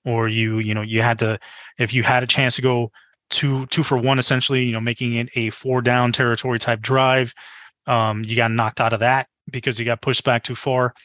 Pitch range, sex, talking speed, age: 115-130 Hz, male, 235 wpm, 20-39